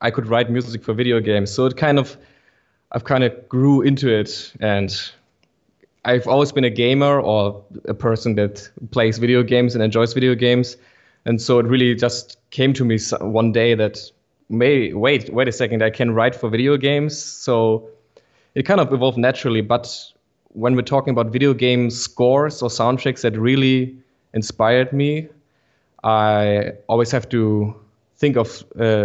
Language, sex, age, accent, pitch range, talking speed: English, male, 20-39, German, 110-130 Hz, 170 wpm